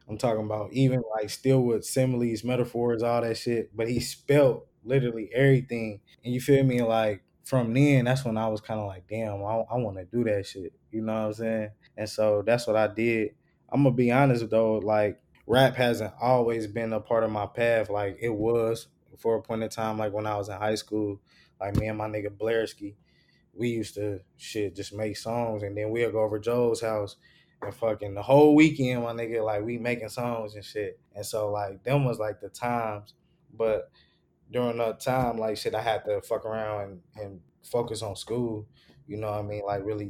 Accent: American